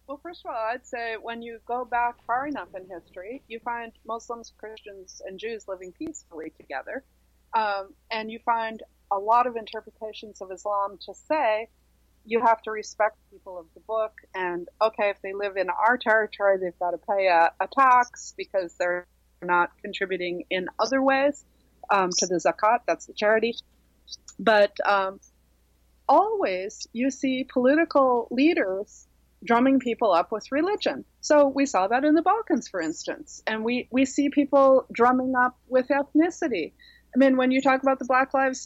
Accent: American